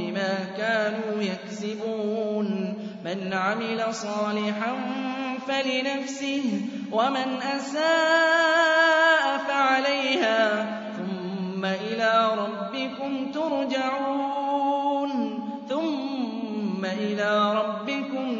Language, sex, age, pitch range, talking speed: Arabic, male, 20-39, 215-280 Hz, 50 wpm